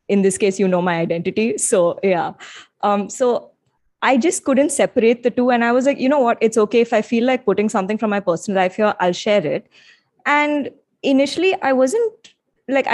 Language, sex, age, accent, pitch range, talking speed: English, female, 20-39, Indian, 185-245 Hz, 210 wpm